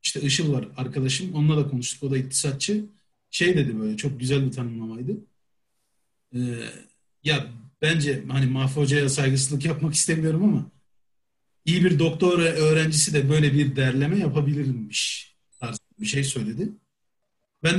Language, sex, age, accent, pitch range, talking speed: Turkish, male, 40-59, native, 140-180 Hz, 140 wpm